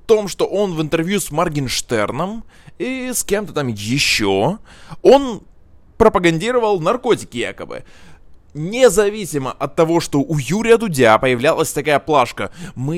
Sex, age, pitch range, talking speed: male, 20-39, 130-180 Hz, 130 wpm